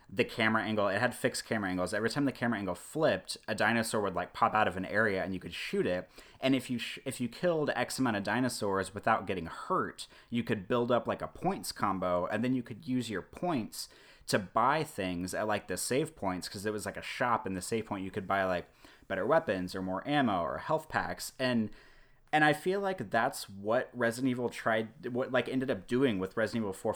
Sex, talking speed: male, 235 wpm